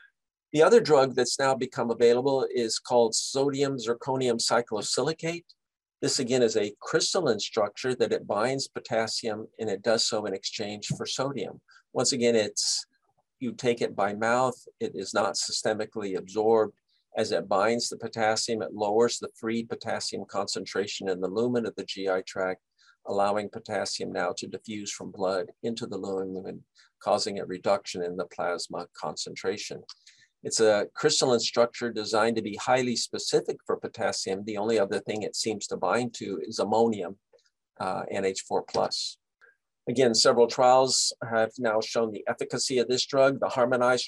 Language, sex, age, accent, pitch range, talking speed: English, male, 50-69, American, 105-125 Hz, 155 wpm